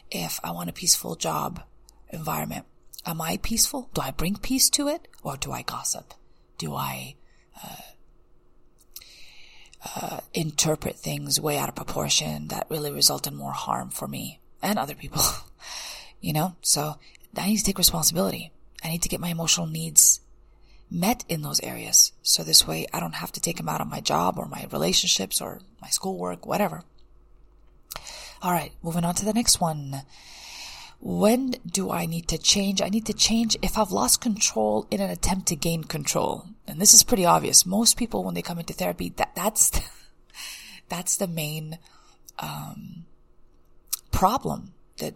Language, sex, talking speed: English, female, 170 wpm